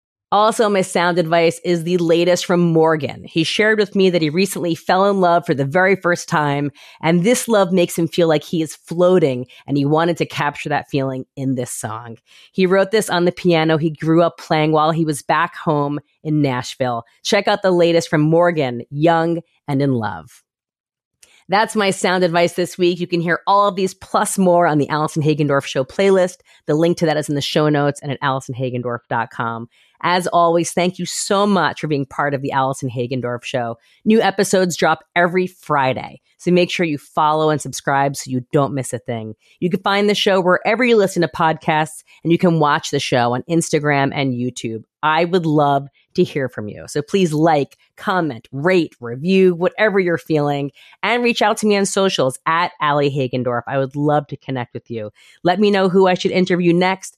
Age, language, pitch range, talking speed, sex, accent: 30-49, English, 140-180 Hz, 205 wpm, female, American